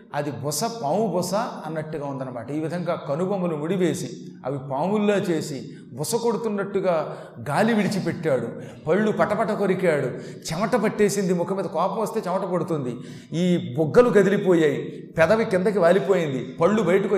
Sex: male